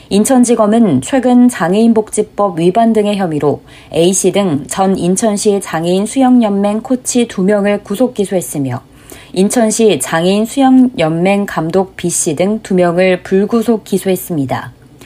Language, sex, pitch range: Korean, female, 170-225 Hz